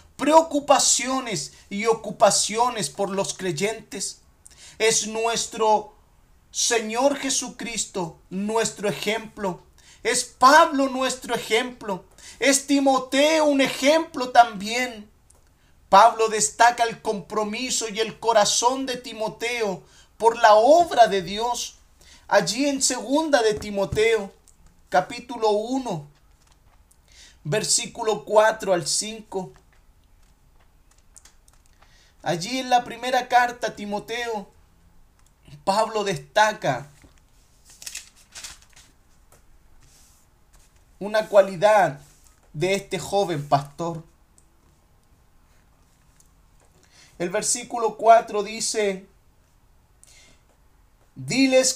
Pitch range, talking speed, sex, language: 170-240 Hz, 75 wpm, male, Spanish